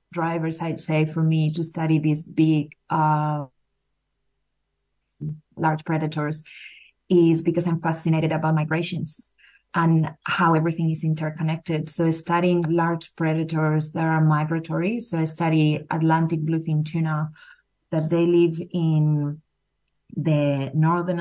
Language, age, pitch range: English, 20-39, 155-175 Hz